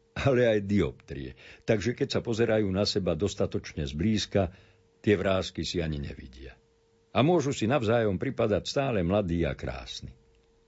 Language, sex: Slovak, male